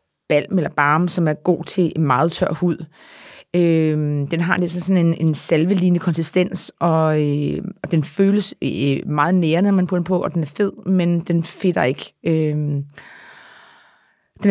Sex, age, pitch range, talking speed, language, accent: female, 30-49, 155-185 Hz, 165 wpm, Danish, native